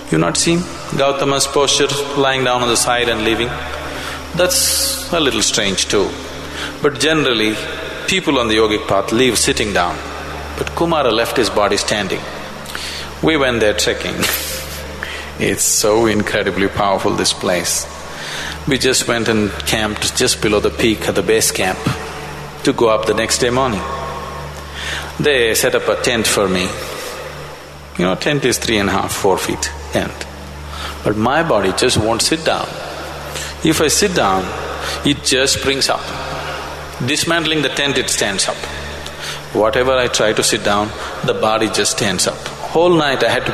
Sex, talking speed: male, 165 wpm